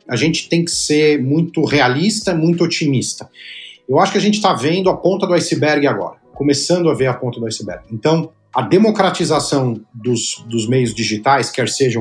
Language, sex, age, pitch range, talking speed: Portuguese, male, 40-59, 120-160 Hz, 185 wpm